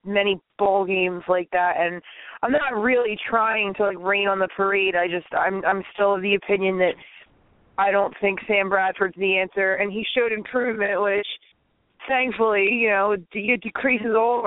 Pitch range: 185-220 Hz